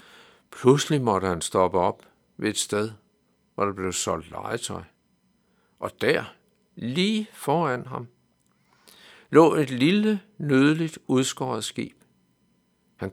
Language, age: Danish, 60-79